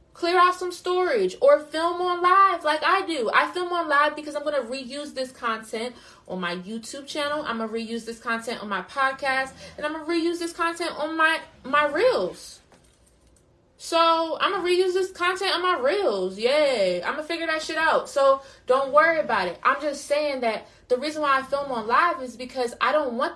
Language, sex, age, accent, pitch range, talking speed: English, female, 20-39, American, 235-300 Hz, 220 wpm